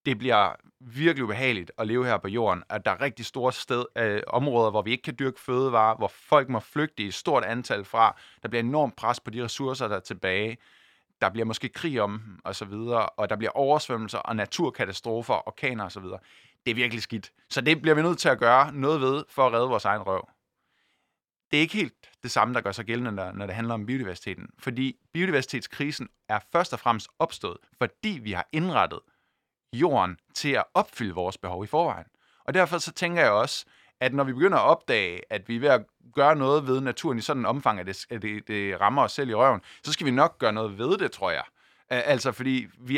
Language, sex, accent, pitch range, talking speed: Danish, male, native, 110-140 Hz, 225 wpm